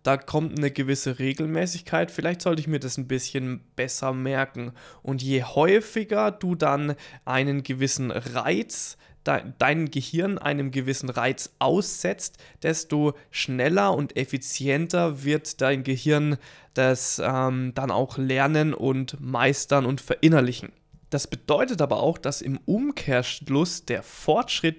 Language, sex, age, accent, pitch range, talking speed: German, male, 20-39, German, 130-165 Hz, 130 wpm